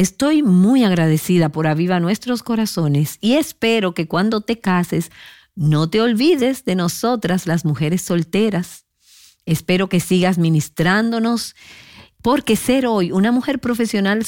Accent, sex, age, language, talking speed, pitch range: American, female, 50-69, Spanish, 130 wpm, 165-230 Hz